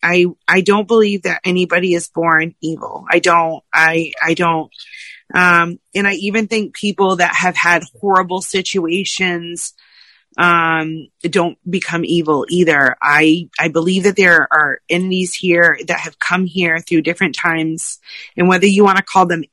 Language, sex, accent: English, female, American